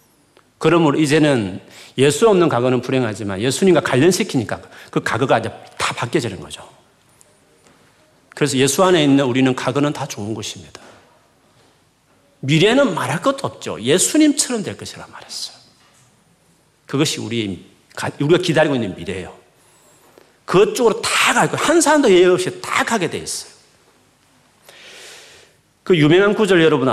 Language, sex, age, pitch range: Korean, male, 40-59, 115-165 Hz